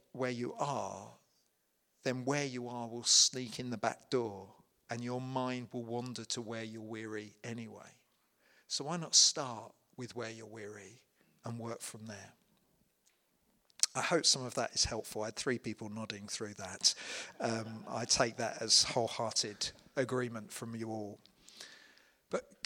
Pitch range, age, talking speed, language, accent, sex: 110-125 Hz, 40-59, 160 wpm, English, British, male